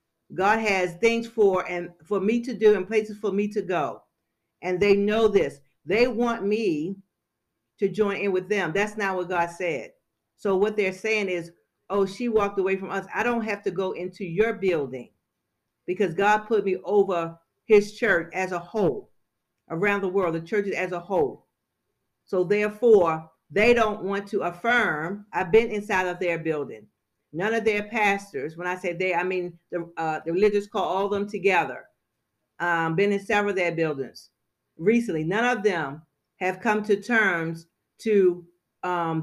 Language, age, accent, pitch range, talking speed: English, 50-69, American, 175-210 Hz, 180 wpm